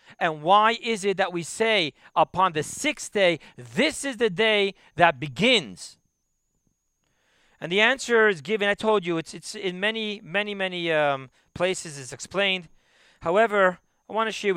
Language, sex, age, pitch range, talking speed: English, male, 40-59, 175-225 Hz, 165 wpm